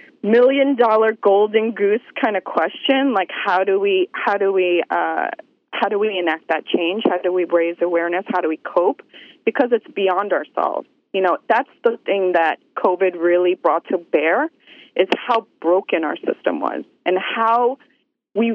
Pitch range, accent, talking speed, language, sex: 180-275 Hz, American, 170 wpm, English, female